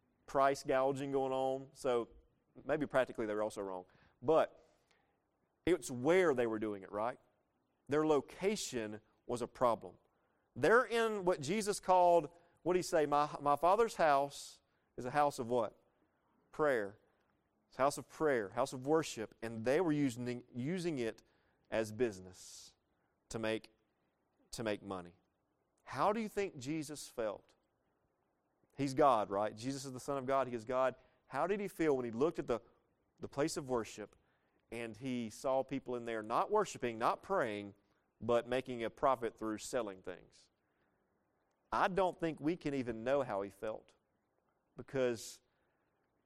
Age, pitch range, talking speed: 40-59, 115-155 Hz, 160 wpm